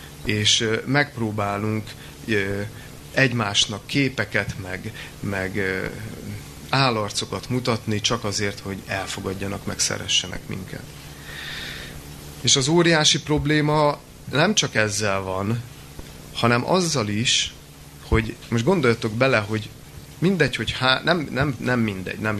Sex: male